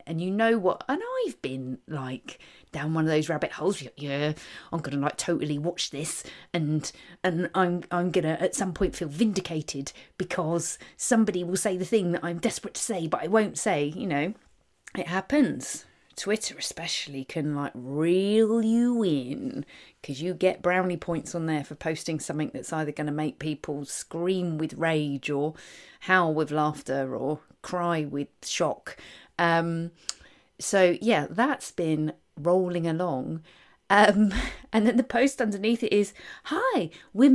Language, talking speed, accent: English, 165 wpm, British